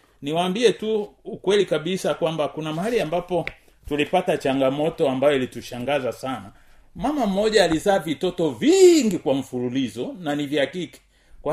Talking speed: 125 wpm